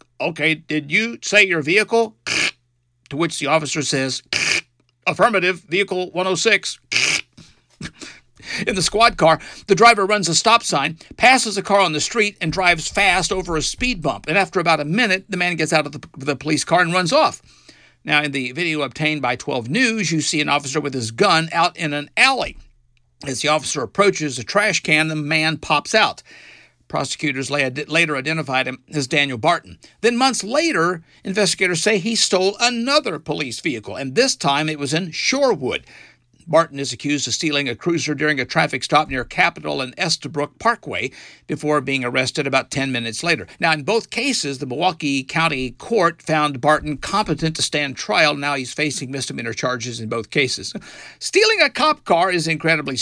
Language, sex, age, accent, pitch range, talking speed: English, male, 50-69, American, 145-195 Hz, 180 wpm